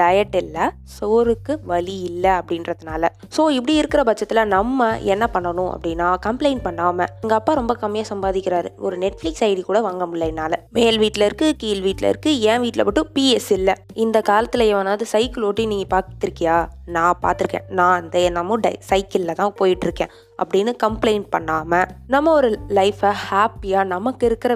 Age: 20-39